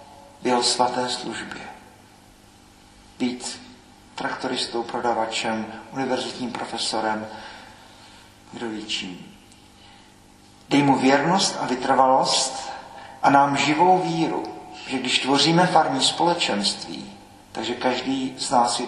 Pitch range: 125-155 Hz